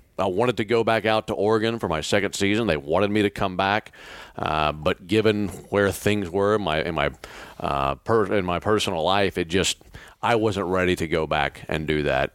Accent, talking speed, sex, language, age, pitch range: American, 195 wpm, male, English, 40-59, 80-105 Hz